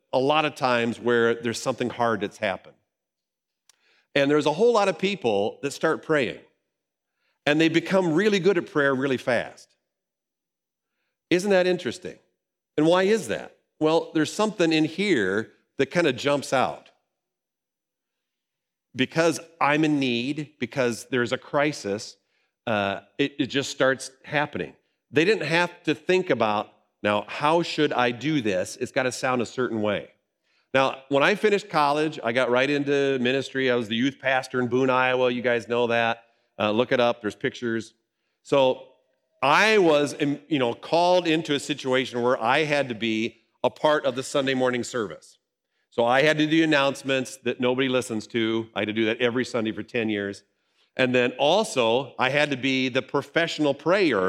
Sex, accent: male, American